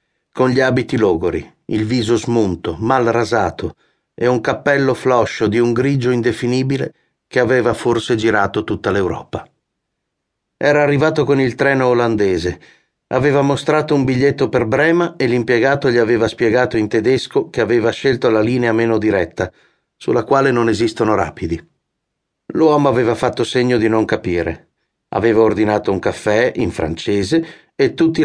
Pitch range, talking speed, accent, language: 110-135 Hz, 145 wpm, native, Italian